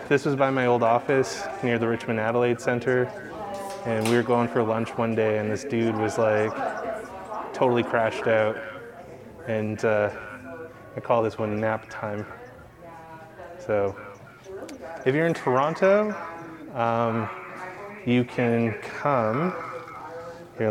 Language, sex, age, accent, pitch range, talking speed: English, male, 20-39, American, 115-155 Hz, 130 wpm